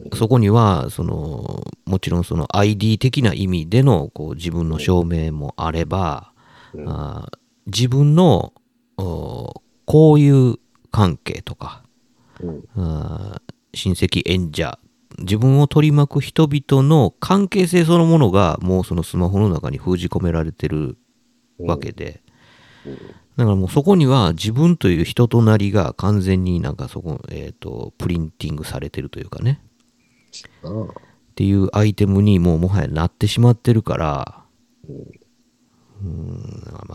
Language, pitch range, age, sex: Japanese, 90-135 Hz, 50-69, male